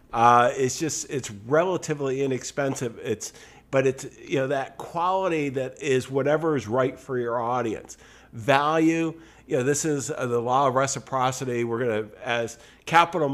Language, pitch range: English, 125-150 Hz